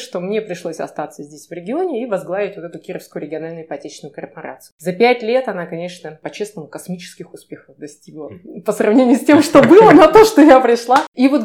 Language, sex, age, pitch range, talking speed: Russian, female, 20-39, 175-255 Hz, 195 wpm